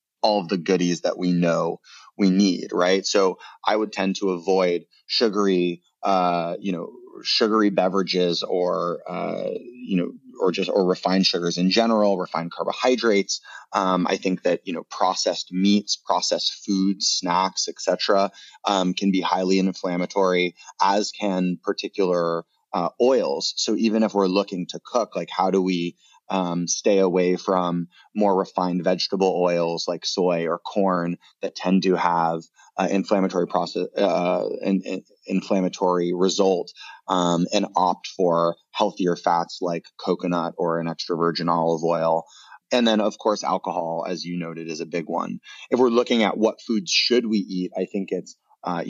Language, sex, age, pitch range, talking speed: English, male, 30-49, 85-100 Hz, 160 wpm